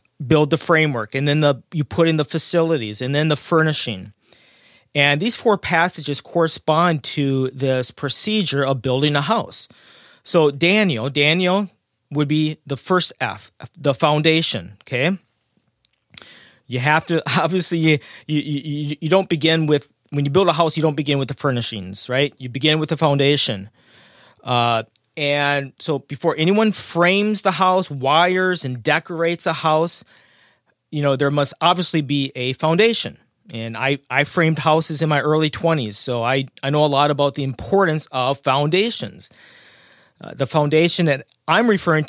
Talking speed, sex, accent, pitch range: 165 wpm, male, American, 135-165 Hz